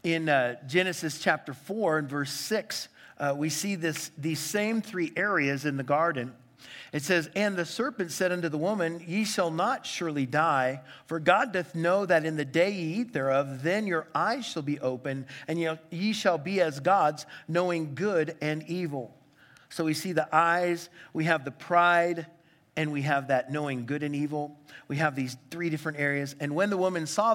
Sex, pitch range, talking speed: male, 140-175 Hz, 195 wpm